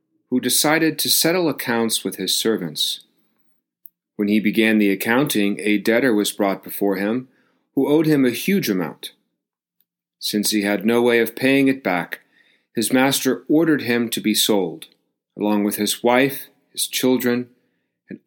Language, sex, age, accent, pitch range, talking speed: English, male, 40-59, American, 100-135 Hz, 160 wpm